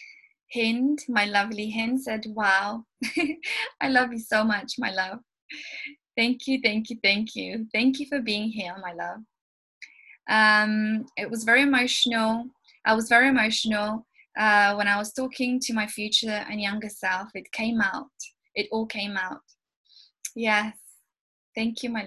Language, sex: English, female